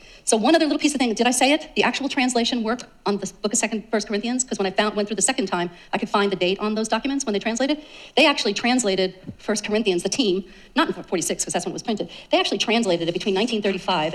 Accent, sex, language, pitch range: American, female, English, 185-240 Hz